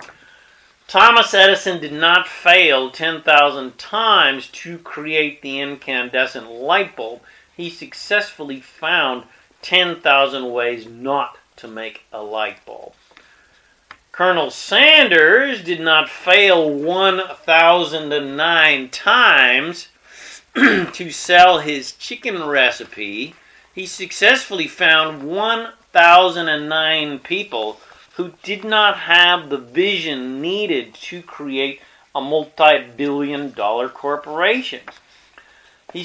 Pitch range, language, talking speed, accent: 140-180 Hz, English, 90 wpm, American